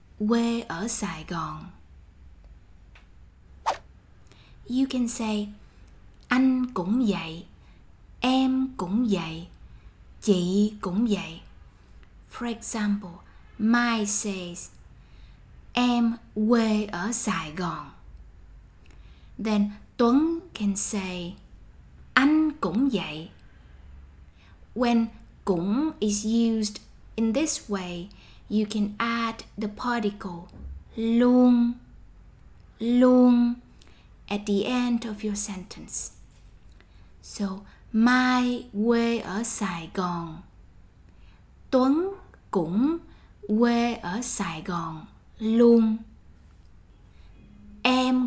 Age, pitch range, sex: 20-39, 160-235 Hz, female